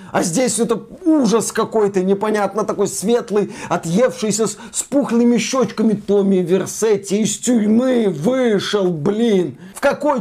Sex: male